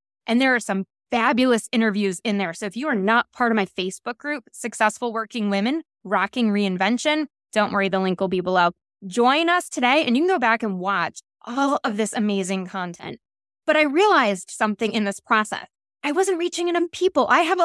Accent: American